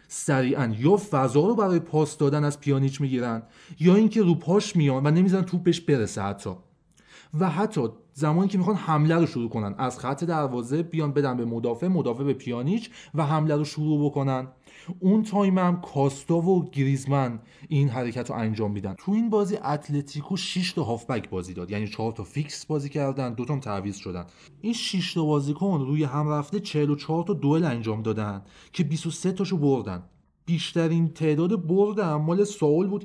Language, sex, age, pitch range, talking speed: Persian, male, 30-49, 125-170 Hz, 175 wpm